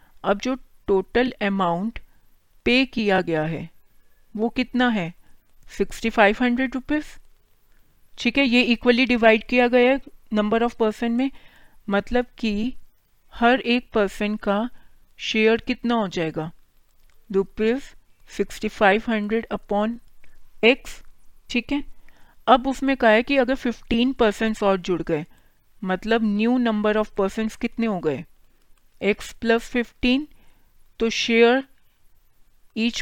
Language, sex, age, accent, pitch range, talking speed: Hindi, female, 40-59, native, 200-240 Hz, 120 wpm